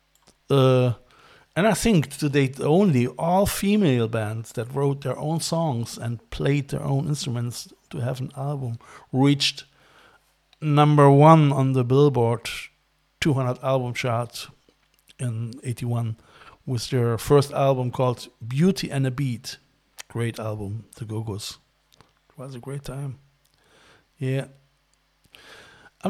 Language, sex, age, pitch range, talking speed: English, male, 50-69, 120-145 Hz, 125 wpm